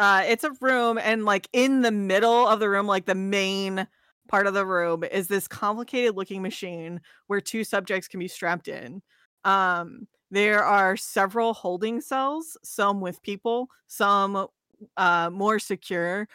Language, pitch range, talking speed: English, 185-220 Hz, 160 wpm